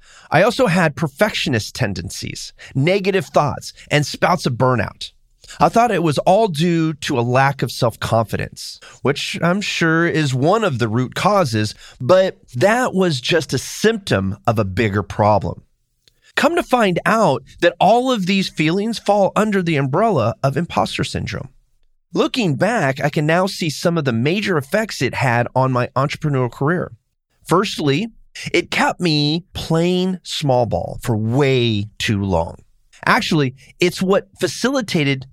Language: English